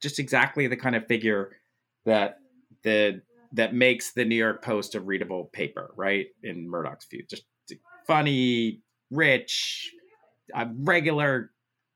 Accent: American